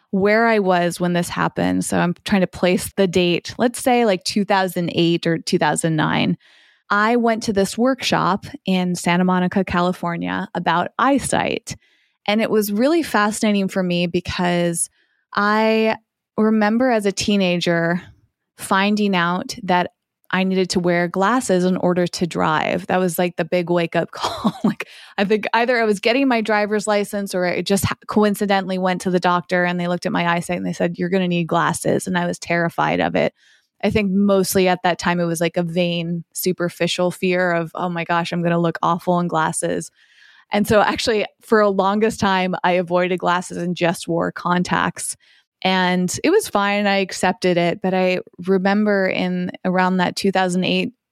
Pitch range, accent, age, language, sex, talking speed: 175-200 Hz, American, 20-39, English, female, 180 wpm